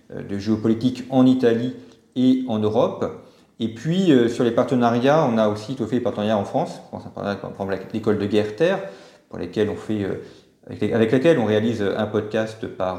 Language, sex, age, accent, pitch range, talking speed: French, male, 40-59, French, 100-130 Hz, 190 wpm